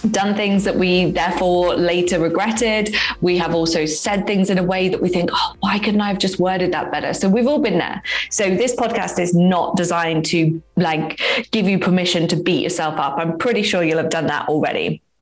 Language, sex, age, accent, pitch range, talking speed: English, female, 20-39, British, 170-220 Hz, 215 wpm